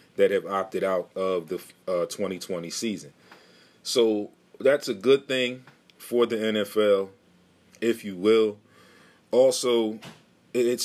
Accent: American